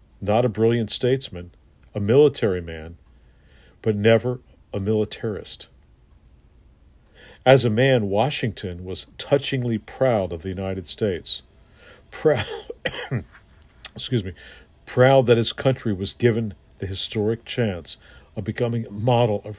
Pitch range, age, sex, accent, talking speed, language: 90-120 Hz, 50-69, male, American, 120 wpm, English